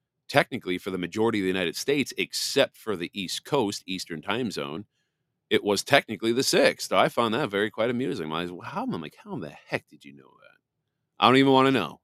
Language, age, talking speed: English, 40-59, 230 wpm